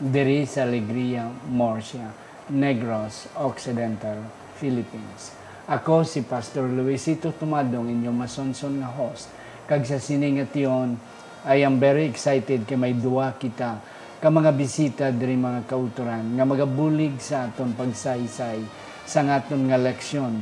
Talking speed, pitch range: 130 wpm, 120-140 Hz